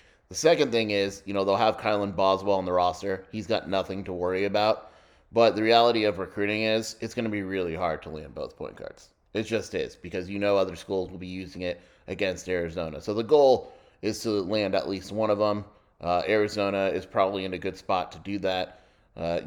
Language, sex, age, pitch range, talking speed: English, male, 30-49, 90-100 Hz, 225 wpm